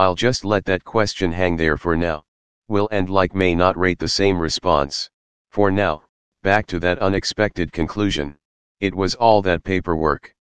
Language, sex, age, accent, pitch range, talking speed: English, male, 40-59, American, 80-100 Hz, 170 wpm